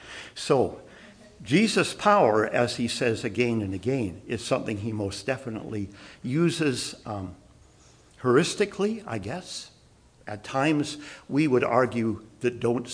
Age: 60-79